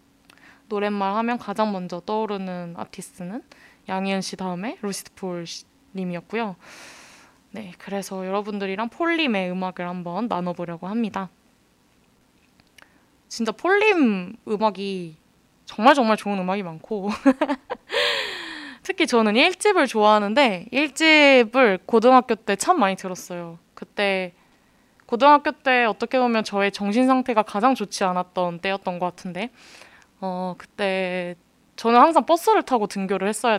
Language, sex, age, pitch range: Korean, female, 20-39, 190-255 Hz